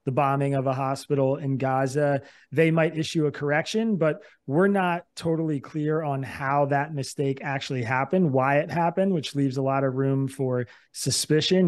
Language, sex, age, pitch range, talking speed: English, male, 30-49, 135-150 Hz, 175 wpm